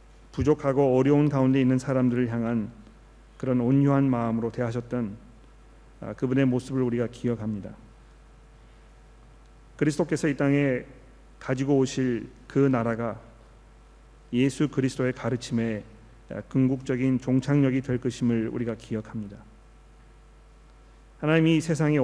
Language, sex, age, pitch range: Korean, male, 40-59, 120-150 Hz